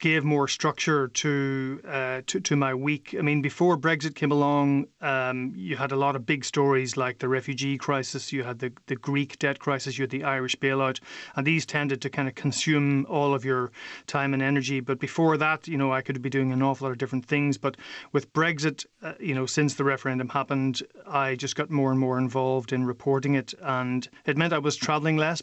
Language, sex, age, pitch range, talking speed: English, male, 30-49, 130-145 Hz, 220 wpm